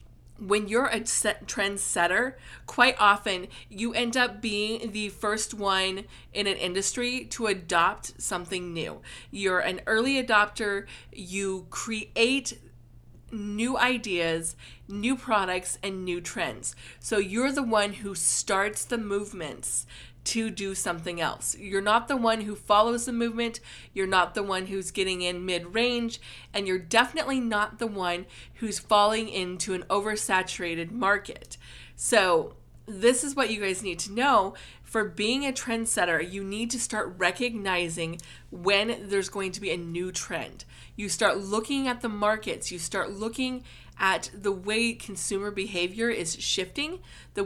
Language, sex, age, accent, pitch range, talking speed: English, female, 20-39, American, 185-230 Hz, 150 wpm